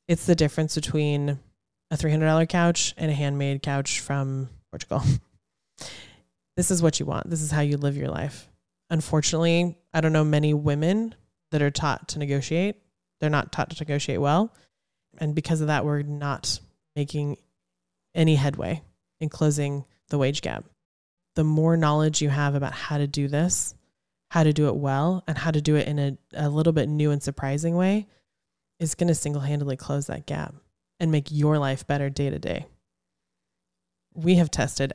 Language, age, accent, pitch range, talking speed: English, 20-39, American, 140-160 Hz, 175 wpm